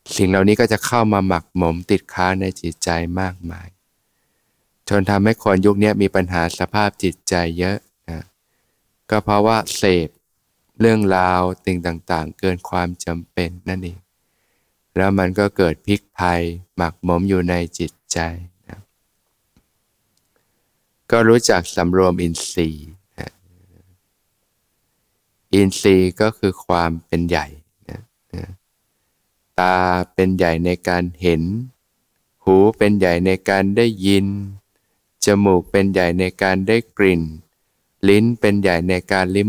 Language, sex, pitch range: Thai, male, 90-100 Hz